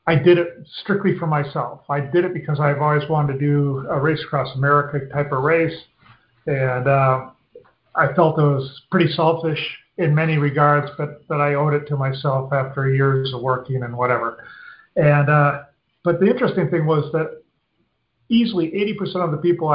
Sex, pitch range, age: male, 145-175 Hz, 40-59